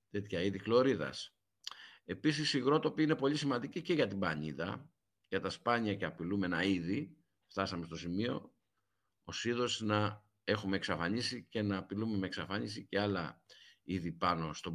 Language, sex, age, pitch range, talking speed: Greek, male, 50-69, 95-125 Hz, 145 wpm